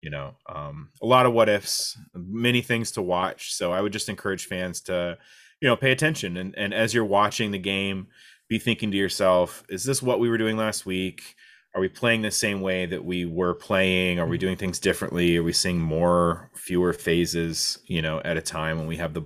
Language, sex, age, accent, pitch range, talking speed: English, male, 30-49, American, 75-100 Hz, 225 wpm